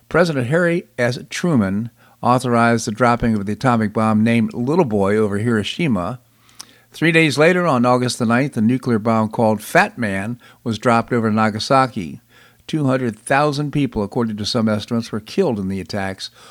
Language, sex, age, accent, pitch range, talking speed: English, male, 50-69, American, 110-130 Hz, 160 wpm